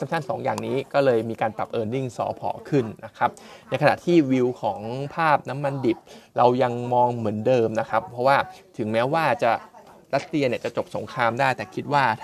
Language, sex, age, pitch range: Thai, male, 20-39, 115-145 Hz